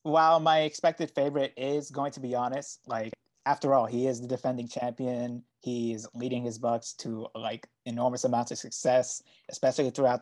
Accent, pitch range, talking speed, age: American, 120-150 Hz, 170 wpm, 20-39